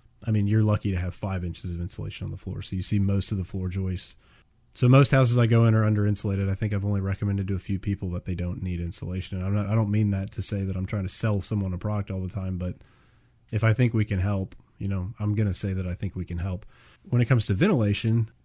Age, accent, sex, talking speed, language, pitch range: 30-49, American, male, 280 wpm, English, 95-115 Hz